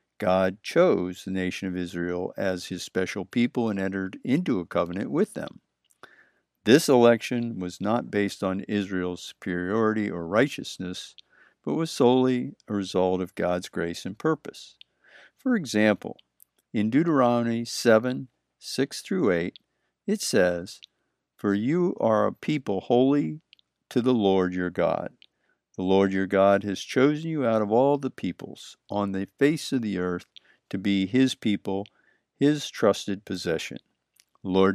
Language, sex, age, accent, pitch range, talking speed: English, male, 60-79, American, 95-120 Hz, 145 wpm